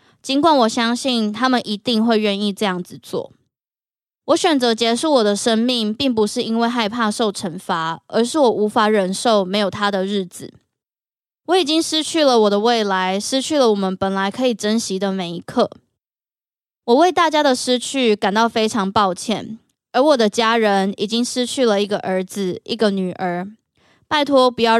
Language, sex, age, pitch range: Chinese, female, 20-39, 200-250 Hz